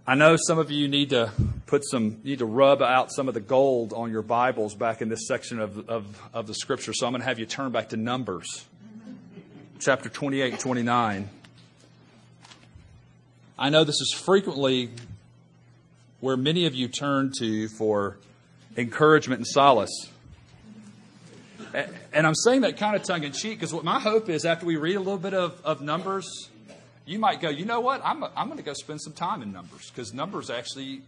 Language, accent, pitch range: English, American, 120-165 Hz